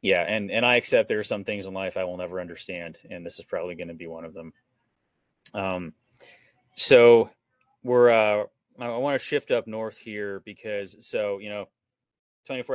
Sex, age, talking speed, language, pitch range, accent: male, 30-49, 200 wpm, English, 95-120 Hz, American